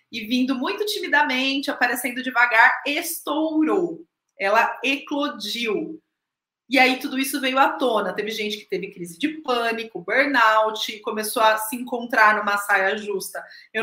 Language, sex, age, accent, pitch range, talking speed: Portuguese, female, 30-49, Brazilian, 210-285 Hz, 140 wpm